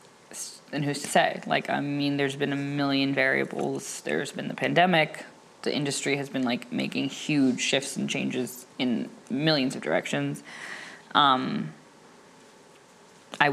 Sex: female